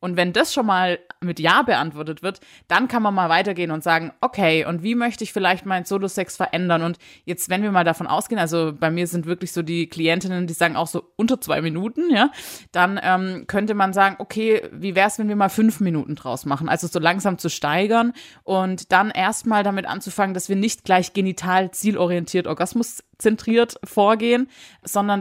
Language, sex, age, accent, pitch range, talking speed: German, female, 20-39, German, 170-200 Hz, 200 wpm